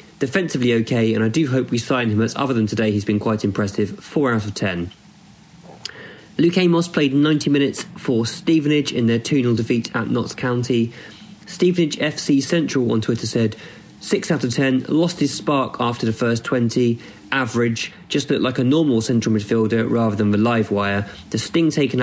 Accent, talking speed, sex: British, 185 wpm, male